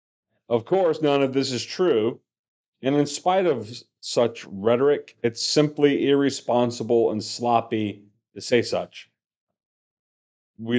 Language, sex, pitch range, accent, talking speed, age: English, male, 100-140 Hz, American, 120 wpm, 40-59